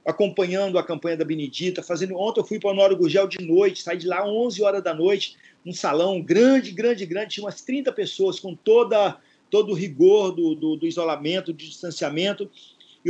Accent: Brazilian